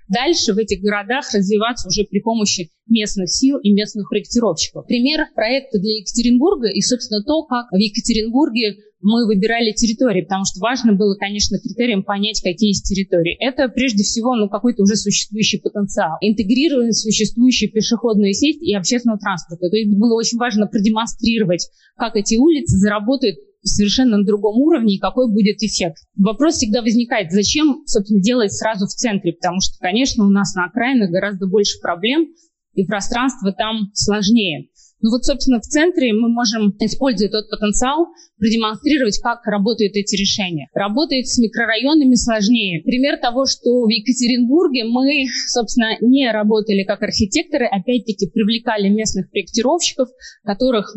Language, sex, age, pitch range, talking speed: Russian, female, 20-39, 205-245 Hz, 150 wpm